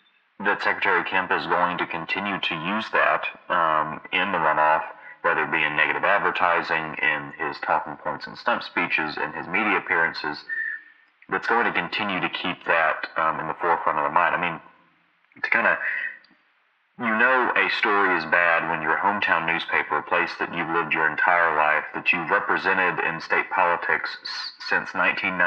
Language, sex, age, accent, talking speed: English, male, 30-49, American, 175 wpm